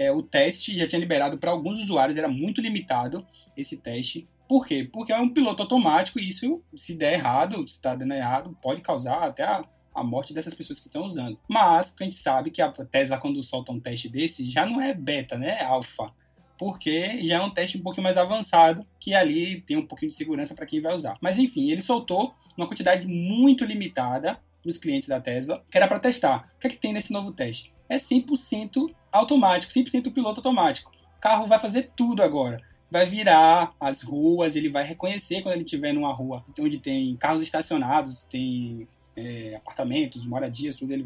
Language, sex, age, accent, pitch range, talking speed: Portuguese, male, 20-39, Brazilian, 155-255 Hz, 200 wpm